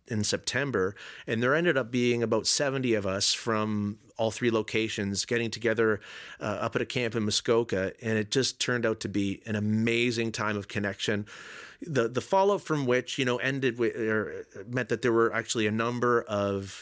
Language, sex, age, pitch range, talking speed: English, male, 40-59, 110-135 Hz, 195 wpm